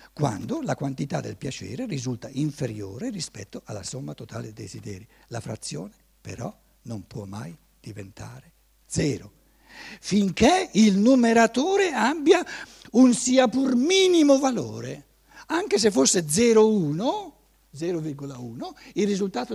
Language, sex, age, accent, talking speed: Italian, male, 60-79, native, 110 wpm